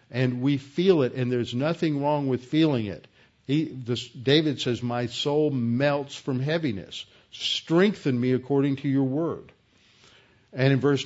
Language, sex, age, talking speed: English, male, 50-69, 155 wpm